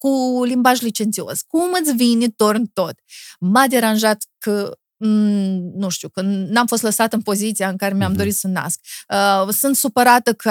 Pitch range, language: 195-245 Hz, Romanian